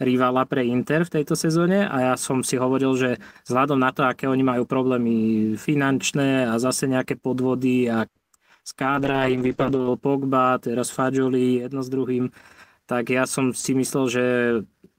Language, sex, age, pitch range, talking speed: Slovak, male, 20-39, 125-145 Hz, 160 wpm